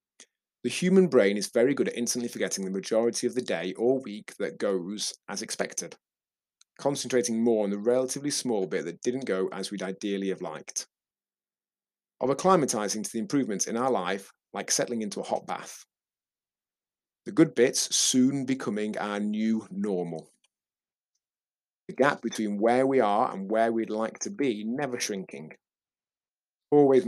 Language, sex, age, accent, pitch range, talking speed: English, male, 30-49, British, 105-130 Hz, 160 wpm